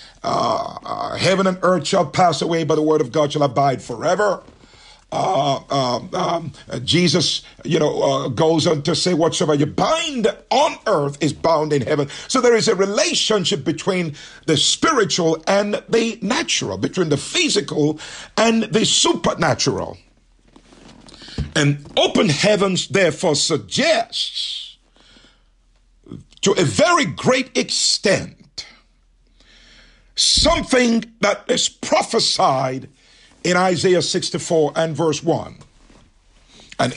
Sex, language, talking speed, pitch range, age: male, English, 120 wpm, 155-220 Hz, 50-69